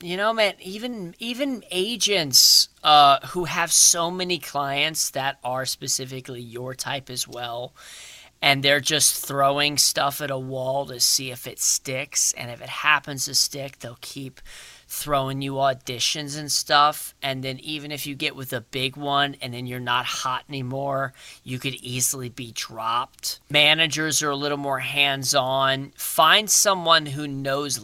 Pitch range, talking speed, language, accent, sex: 130-165 Hz, 165 wpm, English, American, male